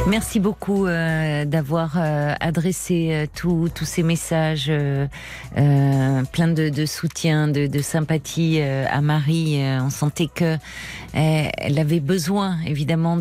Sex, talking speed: female, 105 wpm